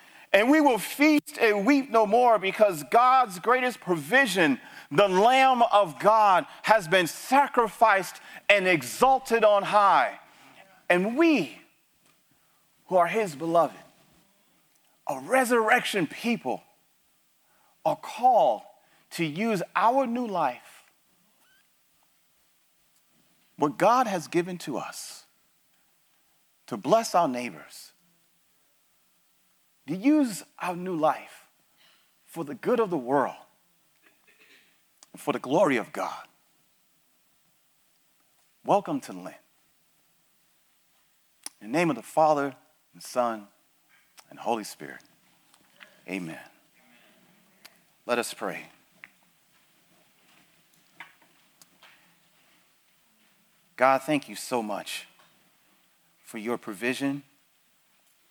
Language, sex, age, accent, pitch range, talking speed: English, male, 40-59, American, 165-250 Hz, 95 wpm